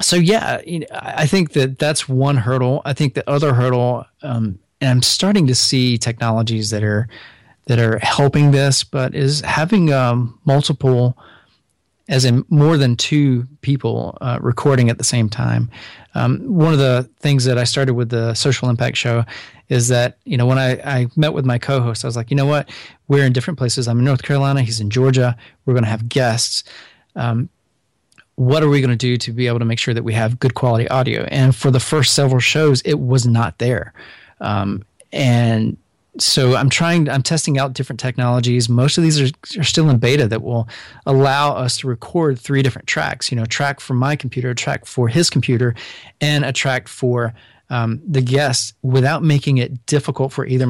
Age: 30-49